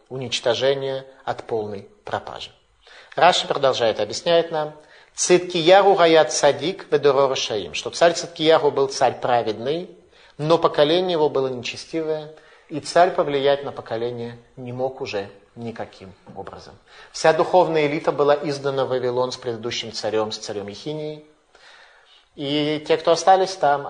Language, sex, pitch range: Russian, male, 130-155 Hz